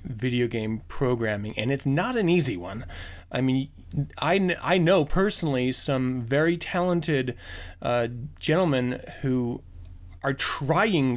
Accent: American